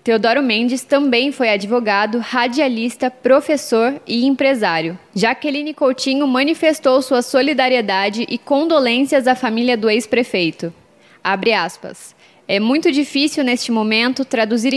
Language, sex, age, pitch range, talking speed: Portuguese, female, 10-29, 230-275 Hz, 115 wpm